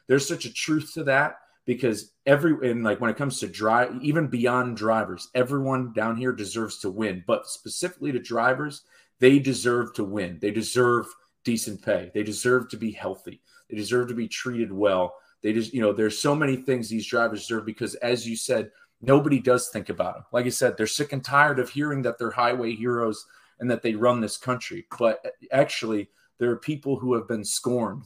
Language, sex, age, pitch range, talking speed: English, male, 30-49, 110-135 Hz, 205 wpm